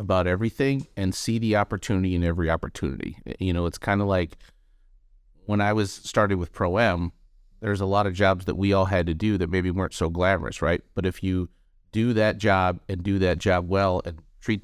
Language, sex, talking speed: English, male, 215 wpm